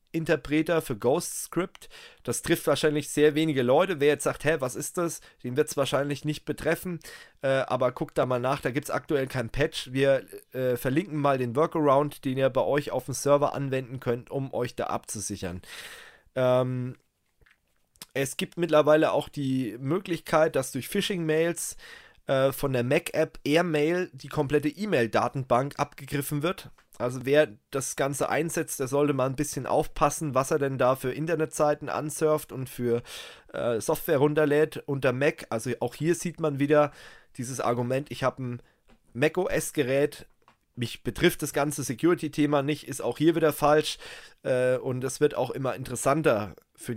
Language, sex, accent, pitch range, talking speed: German, male, German, 130-155 Hz, 170 wpm